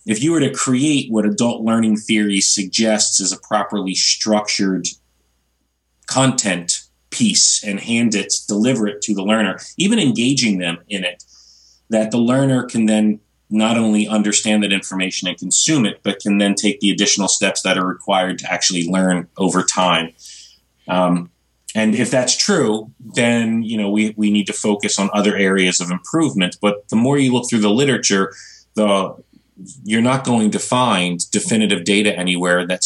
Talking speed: 170 wpm